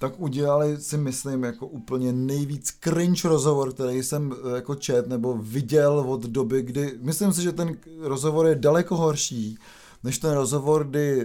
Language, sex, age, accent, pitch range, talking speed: Czech, male, 30-49, native, 130-160 Hz, 160 wpm